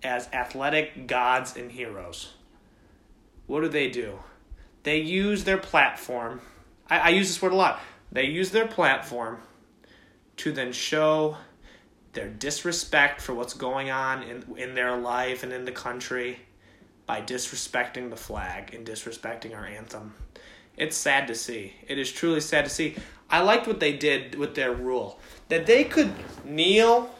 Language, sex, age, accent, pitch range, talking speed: English, male, 30-49, American, 125-185 Hz, 155 wpm